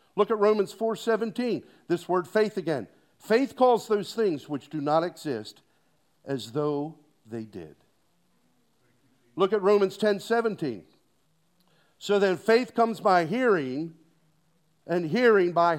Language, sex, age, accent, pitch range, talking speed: English, male, 50-69, American, 160-220 Hz, 125 wpm